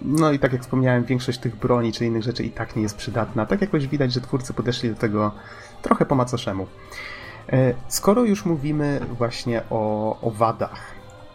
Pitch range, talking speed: 110-130 Hz, 180 wpm